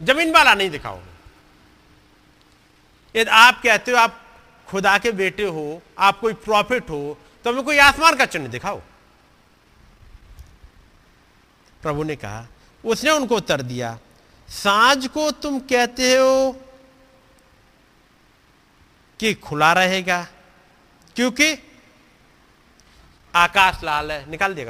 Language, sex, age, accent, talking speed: Hindi, male, 50-69, native, 105 wpm